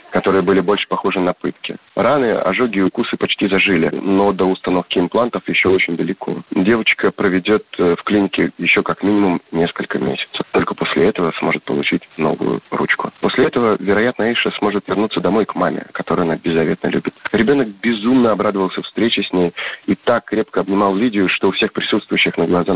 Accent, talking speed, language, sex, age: native, 170 wpm, Russian, male, 30-49